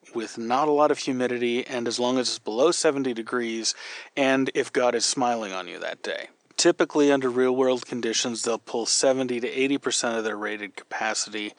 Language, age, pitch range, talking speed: English, 30-49, 115-145 Hz, 190 wpm